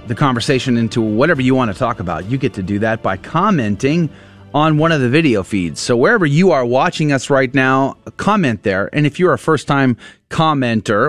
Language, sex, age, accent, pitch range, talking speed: English, male, 30-49, American, 100-135 Hz, 205 wpm